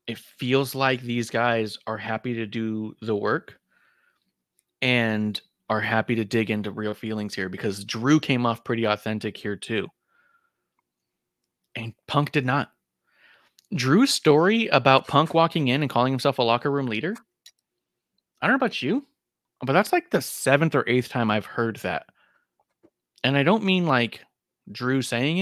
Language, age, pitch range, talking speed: English, 20-39, 115-145 Hz, 160 wpm